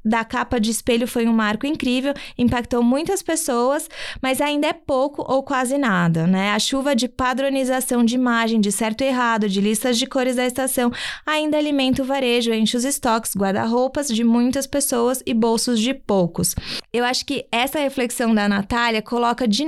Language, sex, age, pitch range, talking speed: Portuguese, female, 20-39, 230-270 Hz, 180 wpm